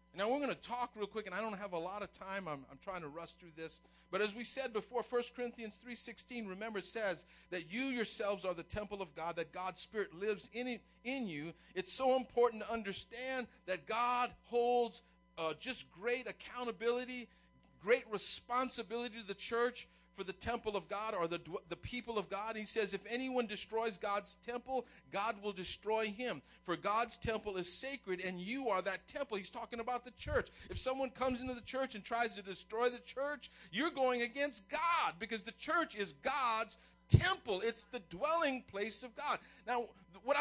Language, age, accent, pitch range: English, 50-69, American, 205-275 Hz